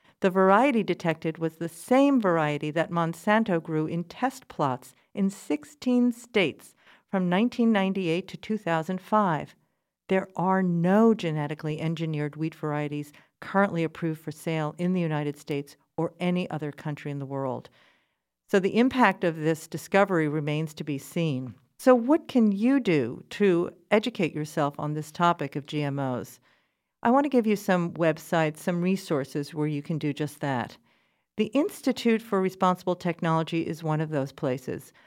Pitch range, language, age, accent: 150-190 Hz, English, 50-69, American